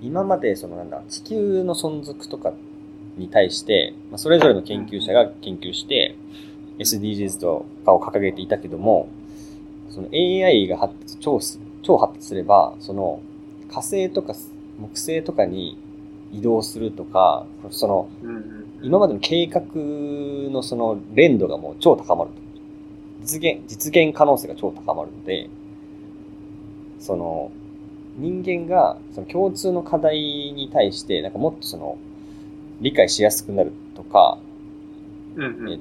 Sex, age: male, 20-39